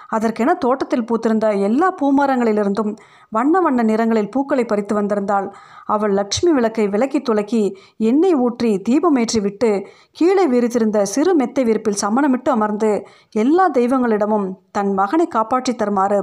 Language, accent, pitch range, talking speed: Tamil, native, 200-260 Hz, 120 wpm